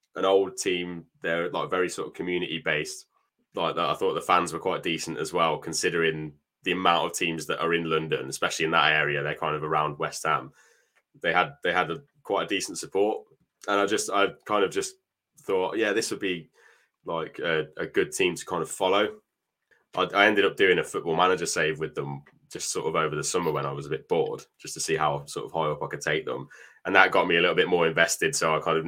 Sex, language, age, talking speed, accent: male, English, 10-29, 245 wpm, British